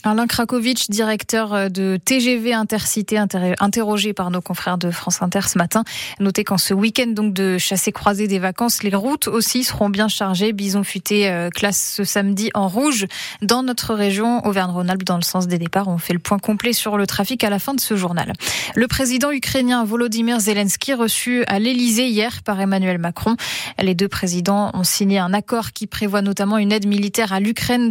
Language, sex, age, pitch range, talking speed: French, female, 20-39, 190-230 Hz, 185 wpm